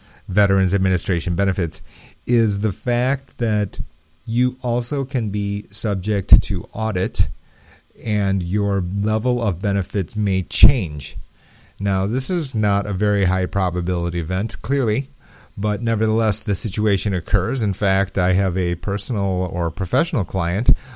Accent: American